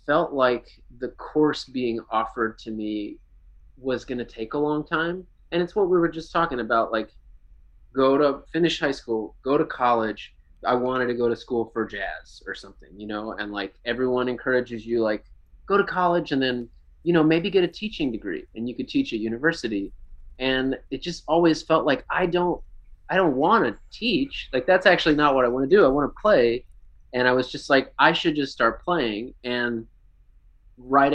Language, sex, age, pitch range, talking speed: English, male, 20-39, 110-140 Hz, 200 wpm